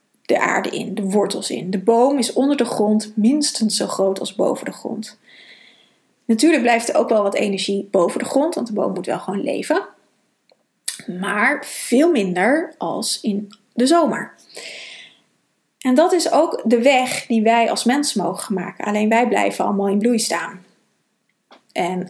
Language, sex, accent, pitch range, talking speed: Dutch, female, Dutch, 205-255 Hz, 170 wpm